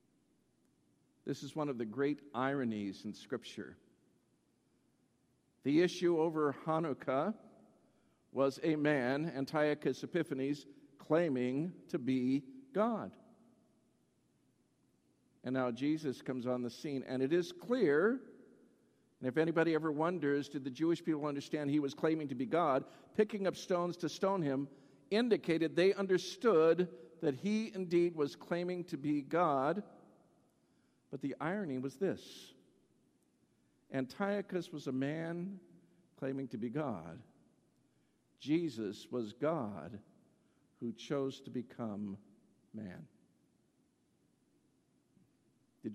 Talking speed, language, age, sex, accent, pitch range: 115 wpm, English, 50-69, male, American, 130-170 Hz